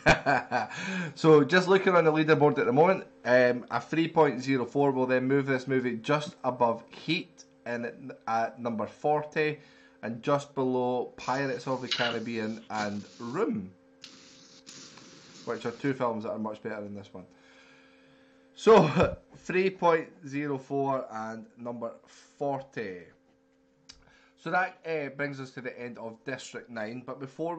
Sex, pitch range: male, 115-145 Hz